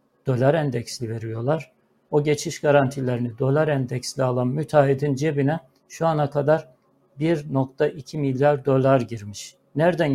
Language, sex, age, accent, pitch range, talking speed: Turkish, male, 60-79, native, 130-145 Hz, 110 wpm